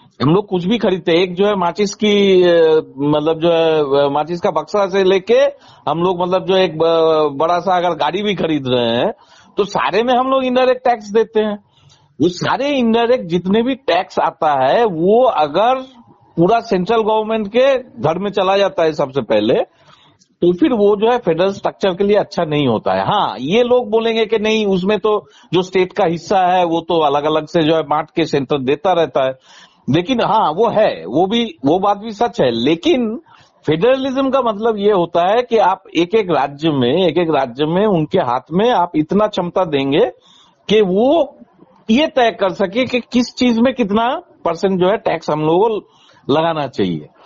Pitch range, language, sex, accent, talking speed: 165-230 Hz, Hindi, male, native, 200 wpm